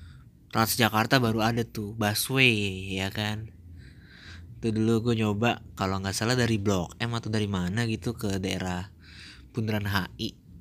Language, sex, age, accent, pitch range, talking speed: Indonesian, male, 20-39, native, 95-120 Hz, 145 wpm